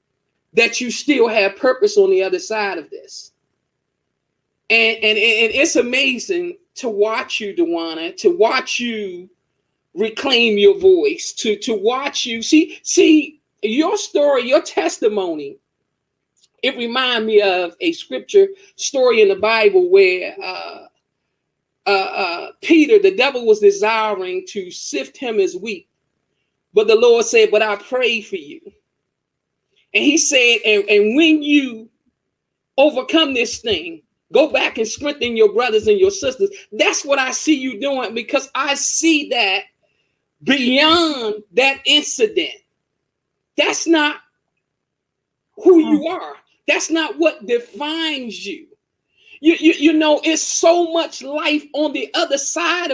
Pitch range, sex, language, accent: 230-355 Hz, male, English, American